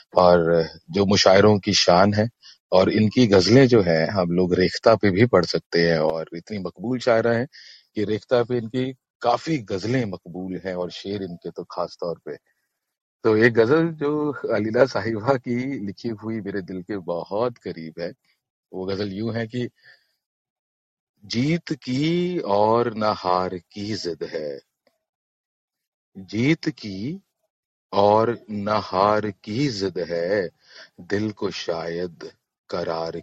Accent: native